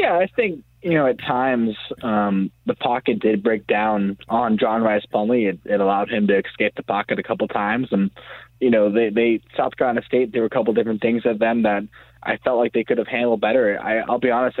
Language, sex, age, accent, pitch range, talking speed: English, male, 20-39, American, 105-125 Hz, 235 wpm